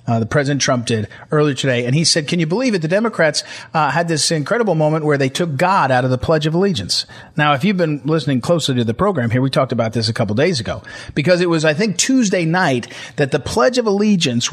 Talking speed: 250 wpm